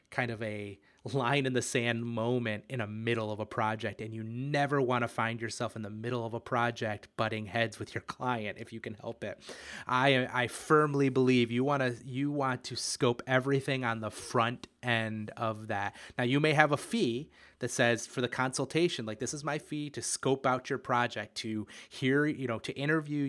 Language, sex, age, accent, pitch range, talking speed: English, male, 30-49, American, 110-130 Hz, 210 wpm